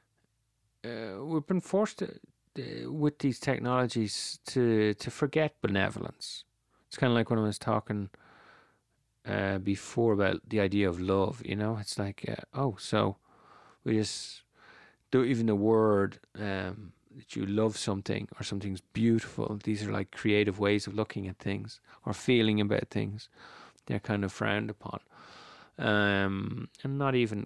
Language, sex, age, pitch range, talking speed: English, male, 40-59, 100-125 Hz, 155 wpm